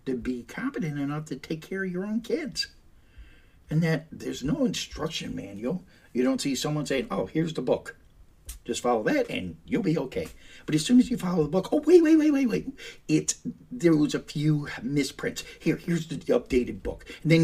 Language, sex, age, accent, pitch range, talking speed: English, male, 50-69, American, 120-195 Hz, 205 wpm